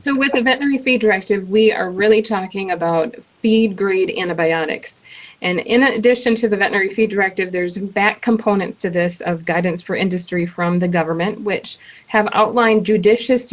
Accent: American